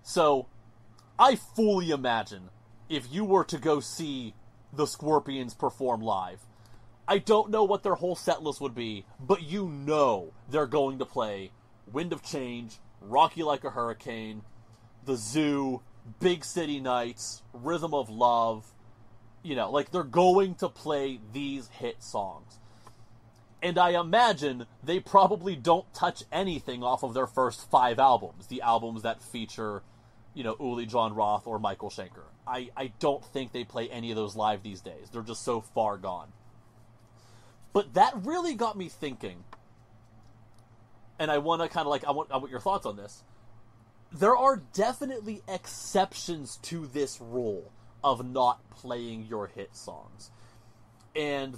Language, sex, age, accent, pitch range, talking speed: English, male, 30-49, American, 115-150 Hz, 155 wpm